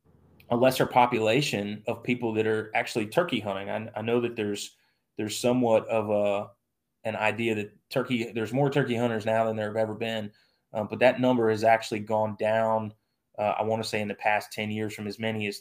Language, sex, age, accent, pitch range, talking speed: English, male, 20-39, American, 105-120 Hz, 210 wpm